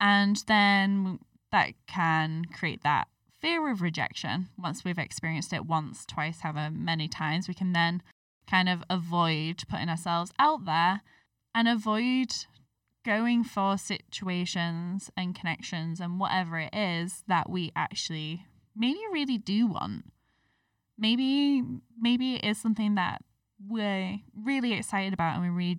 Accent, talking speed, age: British, 135 wpm, 10-29